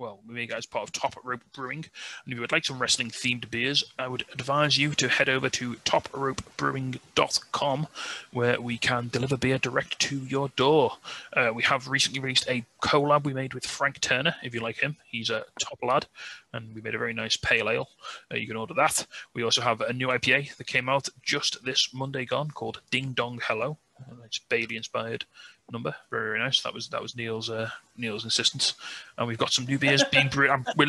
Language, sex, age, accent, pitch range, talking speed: English, male, 30-49, British, 125-140 Hz, 220 wpm